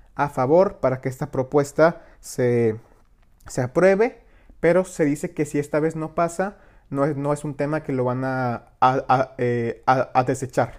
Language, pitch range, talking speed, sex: Spanish, 130-160 Hz, 190 wpm, male